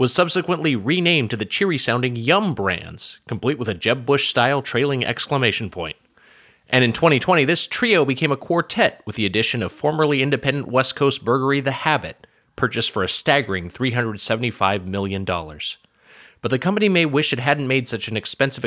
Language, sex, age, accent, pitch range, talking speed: English, male, 30-49, American, 105-140 Hz, 165 wpm